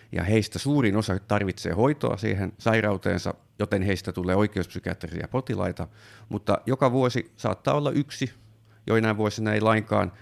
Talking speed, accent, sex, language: 135 wpm, native, male, Finnish